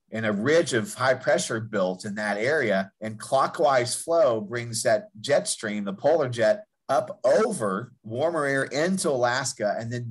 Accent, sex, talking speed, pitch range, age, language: American, male, 165 wpm, 110-135 Hz, 40-59, English